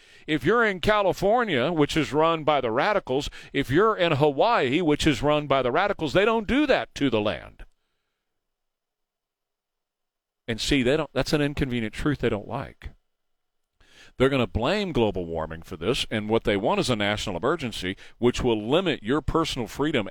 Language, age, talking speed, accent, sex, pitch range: English, 40-59, 180 wpm, American, male, 125-175 Hz